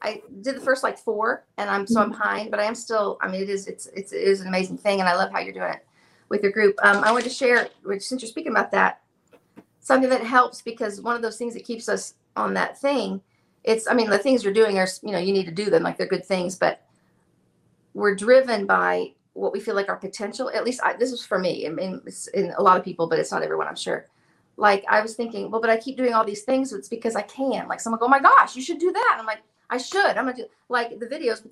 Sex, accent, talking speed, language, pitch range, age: female, American, 290 wpm, English, 205-255 Hz, 40-59